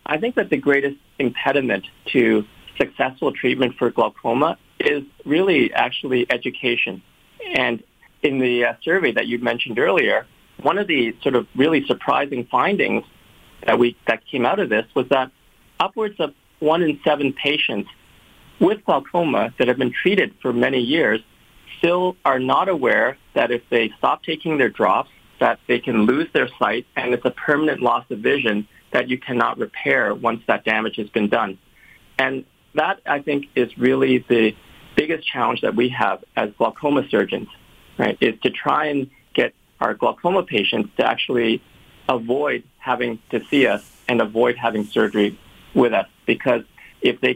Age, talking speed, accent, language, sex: 40-59, 165 wpm, American, English, male